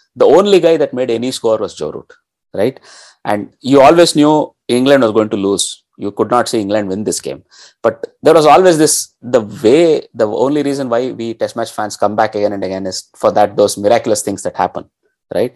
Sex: male